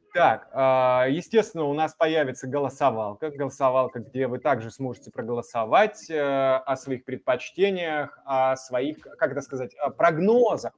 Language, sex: Russian, male